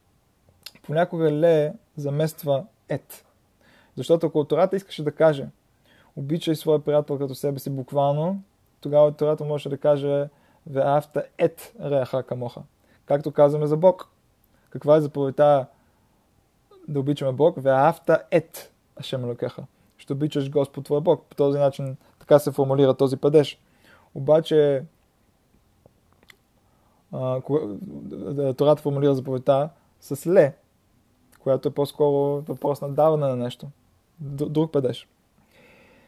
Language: Bulgarian